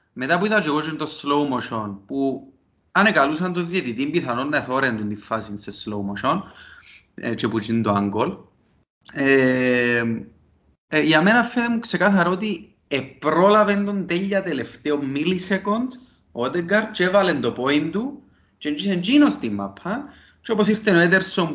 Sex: male